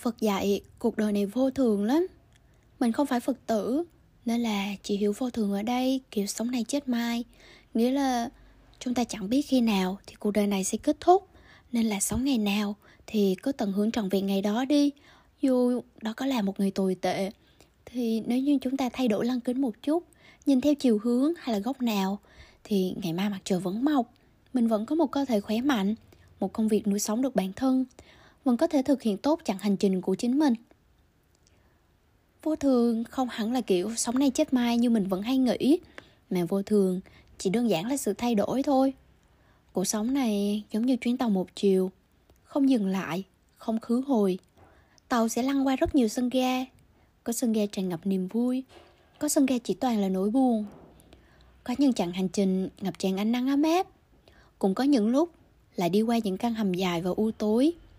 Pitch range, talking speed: 205-260 Hz, 215 wpm